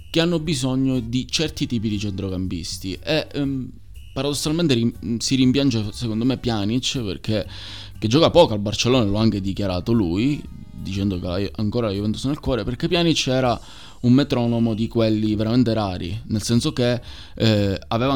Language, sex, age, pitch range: Italian, male, 20-39, 100-125 Hz